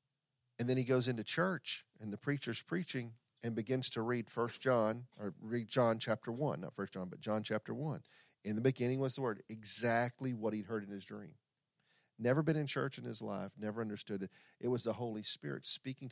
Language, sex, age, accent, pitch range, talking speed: English, male, 40-59, American, 105-135 Hz, 210 wpm